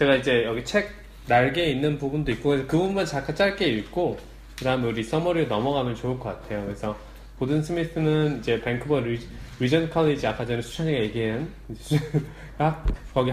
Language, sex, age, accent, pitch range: Korean, male, 20-39, native, 110-150 Hz